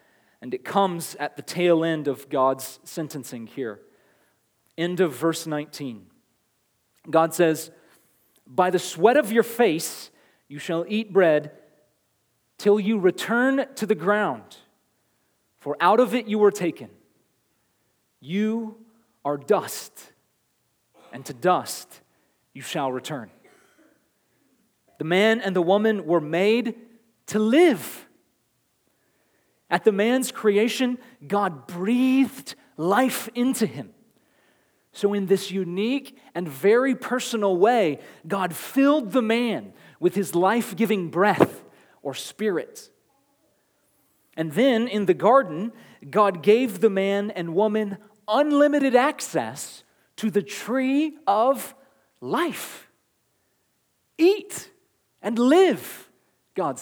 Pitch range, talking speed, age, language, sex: 170-235 Hz, 115 wpm, 30-49, English, male